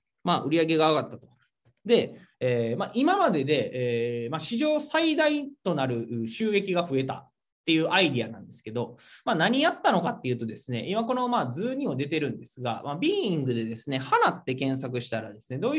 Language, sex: Japanese, male